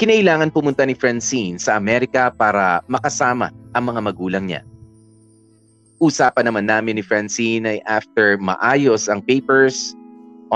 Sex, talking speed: male, 130 wpm